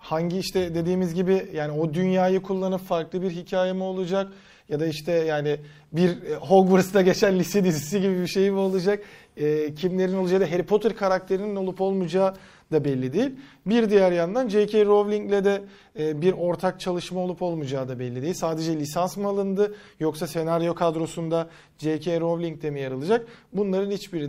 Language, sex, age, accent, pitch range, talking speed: Turkish, male, 40-59, native, 160-195 Hz, 160 wpm